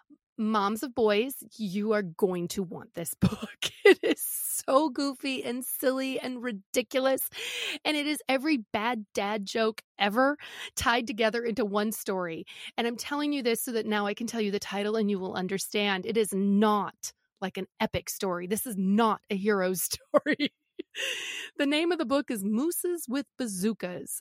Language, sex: English, female